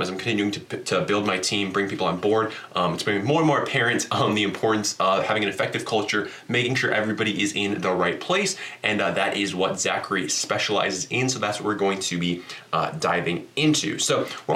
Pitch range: 95-120 Hz